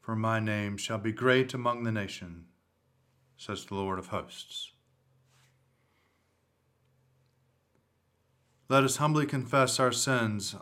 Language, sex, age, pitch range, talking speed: English, male, 40-59, 110-130 Hz, 115 wpm